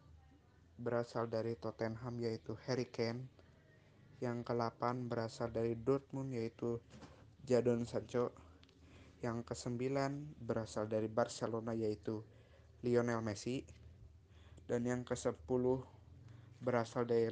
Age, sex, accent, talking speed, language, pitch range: 20-39, male, native, 95 wpm, Indonesian, 110-125 Hz